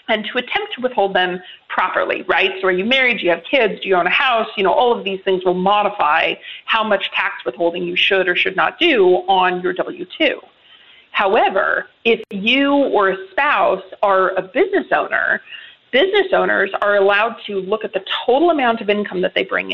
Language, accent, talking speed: English, American, 205 wpm